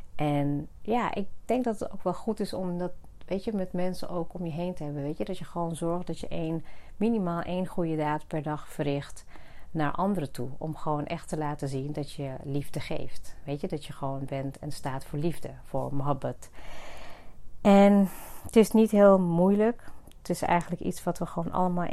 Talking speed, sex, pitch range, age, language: 210 wpm, female, 150-180 Hz, 40-59, Dutch